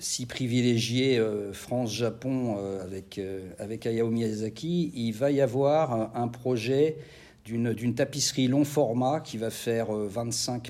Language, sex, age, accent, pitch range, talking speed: French, male, 50-69, French, 110-140 Hz, 140 wpm